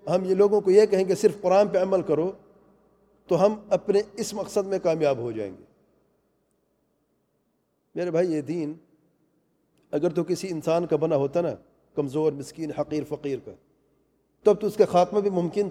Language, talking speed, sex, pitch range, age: English, 180 wpm, male, 155-200 Hz, 40-59